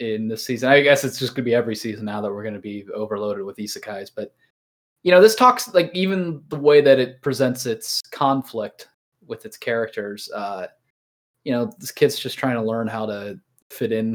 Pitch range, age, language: 110-145 Hz, 20-39, English